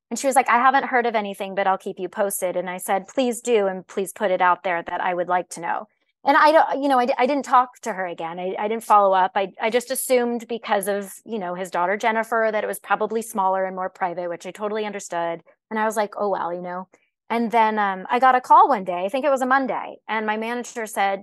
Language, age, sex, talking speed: English, 20-39, female, 275 wpm